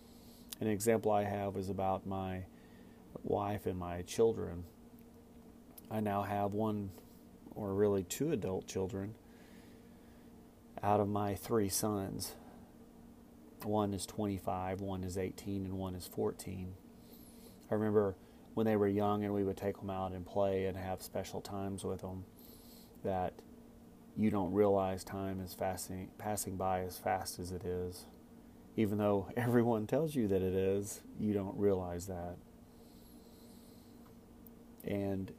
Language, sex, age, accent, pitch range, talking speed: English, male, 30-49, American, 95-105 Hz, 135 wpm